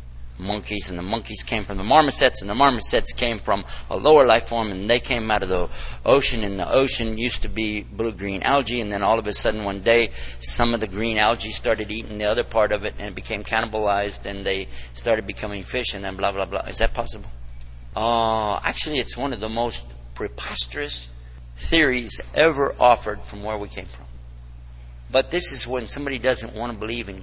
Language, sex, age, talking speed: English, male, 60-79, 210 wpm